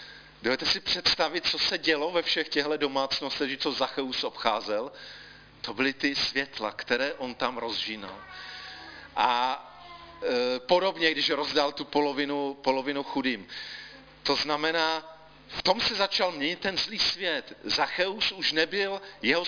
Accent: native